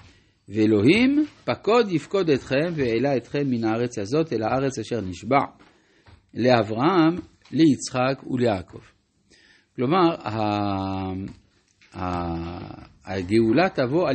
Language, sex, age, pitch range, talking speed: Hebrew, male, 50-69, 110-155 Hz, 80 wpm